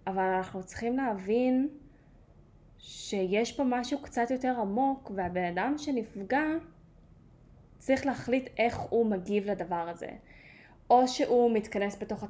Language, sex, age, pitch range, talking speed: Hebrew, female, 10-29, 195-260 Hz, 115 wpm